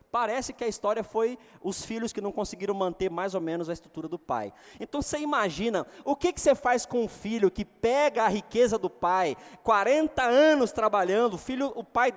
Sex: male